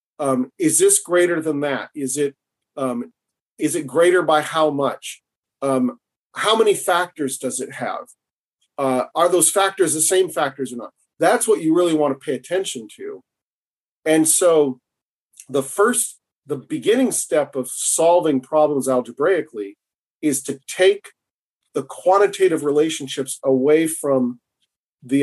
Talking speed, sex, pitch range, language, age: 140 wpm, male, 140-210 Hz, English, 40-59